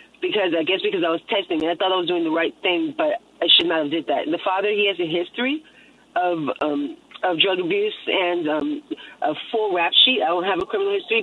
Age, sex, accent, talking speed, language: 30-49, female, American, 245 wpm, English